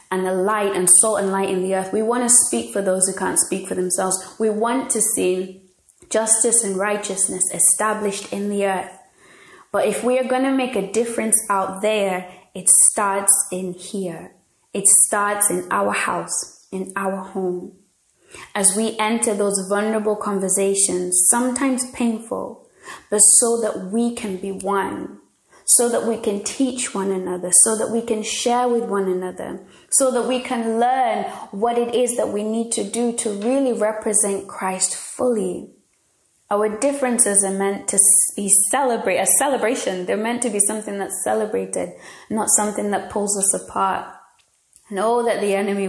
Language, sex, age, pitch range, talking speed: English, female, 20-39, 185-230 Hz, 170 wpm